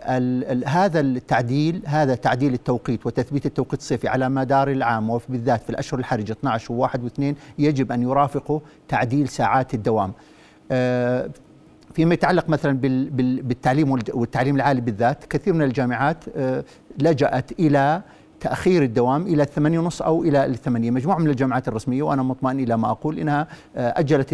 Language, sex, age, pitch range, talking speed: Arabic, male, 50-69, 130-165 Hz, 140 wpm